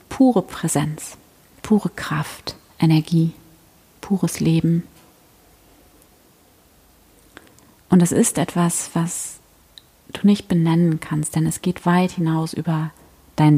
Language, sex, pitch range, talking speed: German, female, 150-175 Hz, 100 wpm